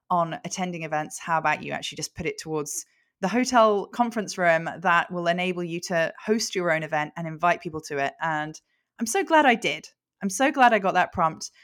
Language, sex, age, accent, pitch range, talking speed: English, female, 20-39, British, 170-215 Hz, 215 wpm